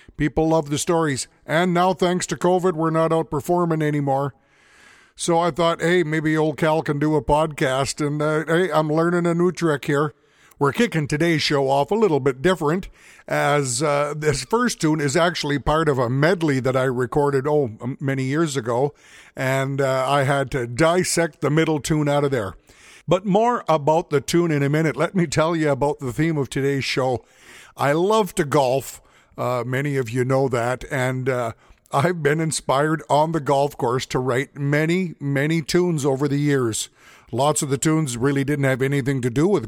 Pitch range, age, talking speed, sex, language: 135-165 Hz, 50-69, 195 wpm, male, English